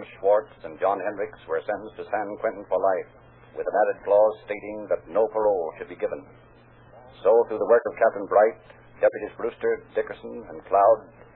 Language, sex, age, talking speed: English, male, 60-79, 180 wpm